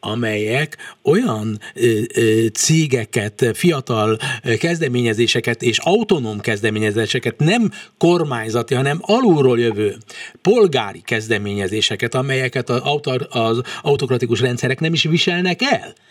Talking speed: 95 wpm